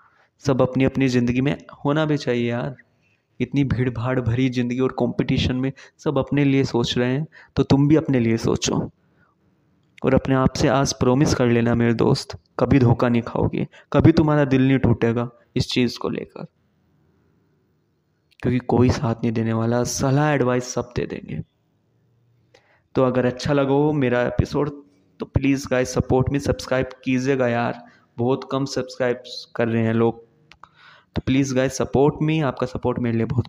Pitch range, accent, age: 125-140 Hz, native, 20-39